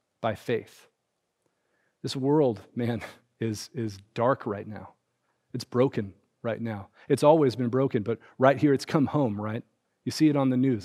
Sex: male